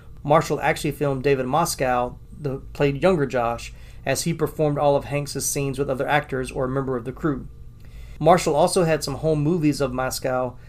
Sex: male